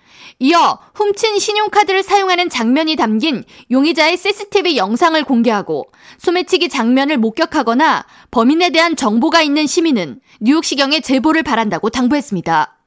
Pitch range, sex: 260-370 Hz, female